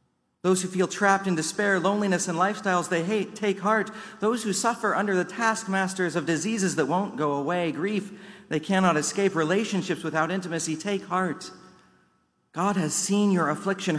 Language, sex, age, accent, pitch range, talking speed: English, male, 40-59, American, 130-190 Hz, 165 wpm